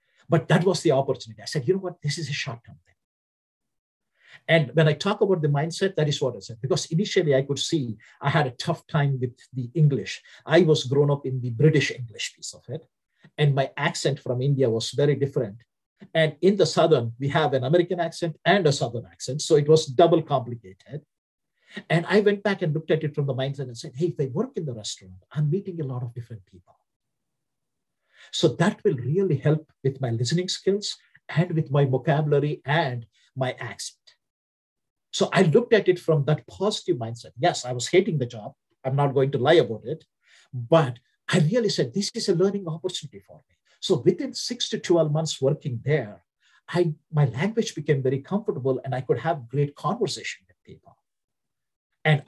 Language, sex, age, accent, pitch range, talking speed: English, male, 50-69, Indian, 130-170 Hz, 200 wpm